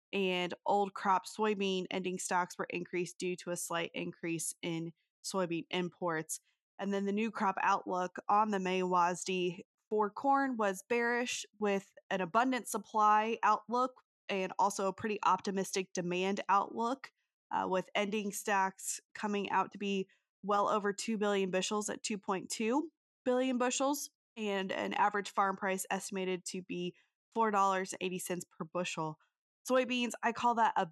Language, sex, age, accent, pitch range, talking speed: English, female, 20-39, American, 185-210 Hz, 145 wpm